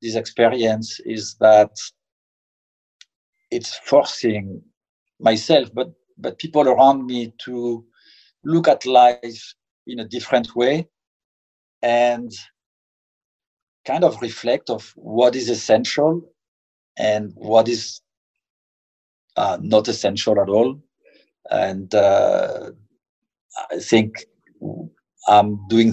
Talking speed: 95 wpm